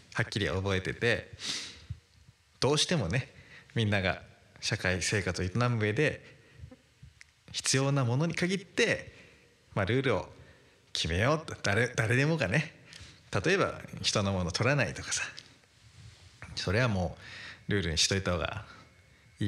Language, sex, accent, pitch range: Japanese, male, native, 100-130 Hz